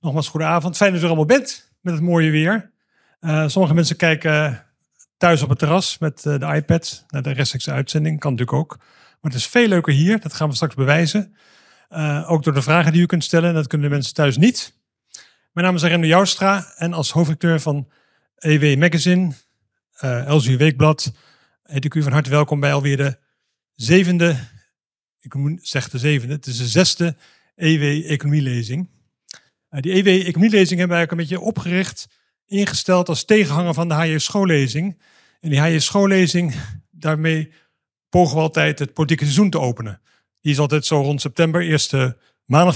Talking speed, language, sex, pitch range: 175 wpm, Dutch, male, 145-175 Hz